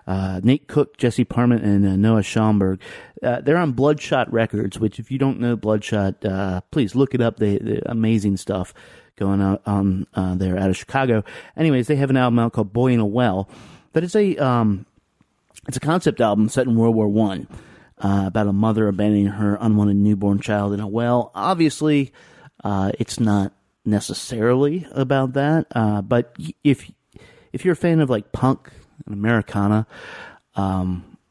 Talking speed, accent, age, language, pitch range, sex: 180 wpm, American, 30-49, English, 100-130 Hz, male